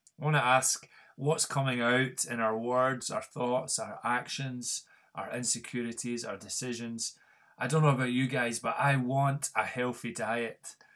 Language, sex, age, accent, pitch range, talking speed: English, male, 30-49, British, 115-135 Hz, 165 wpm